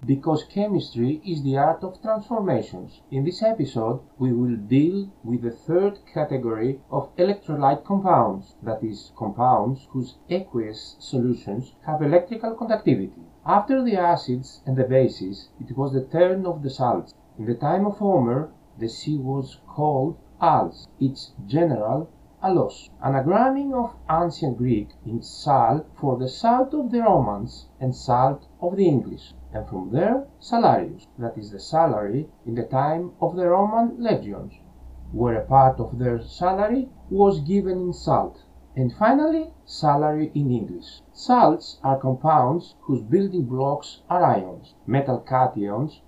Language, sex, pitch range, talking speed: Greek, male, 125-175 Hz, 145 wpm